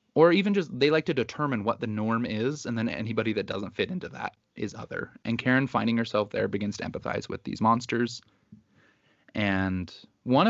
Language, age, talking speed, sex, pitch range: English, 20-39, 195 wpm, male, 100-120 Hz